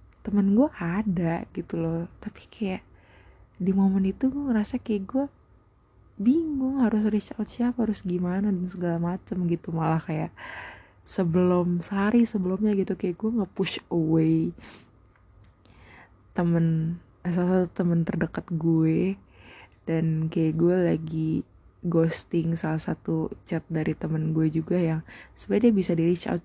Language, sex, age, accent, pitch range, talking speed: Indonesian, female, 20-39, native, 160-185 Hz, 135 wpm